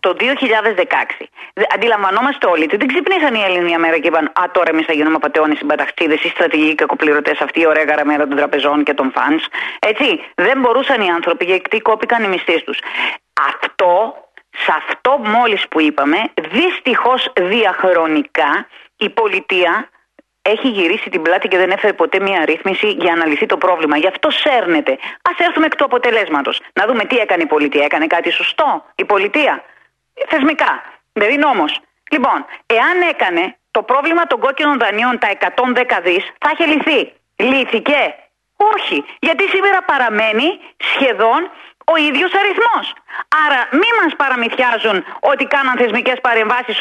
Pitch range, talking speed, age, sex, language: 185-285 Hz, 155 wpm, 30-49, female, Greek